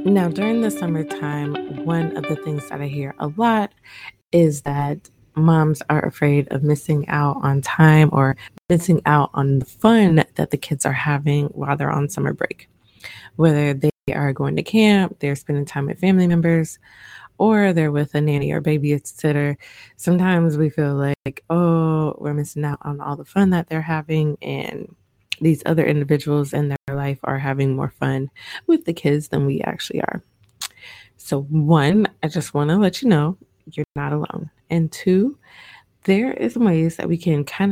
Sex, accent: female, American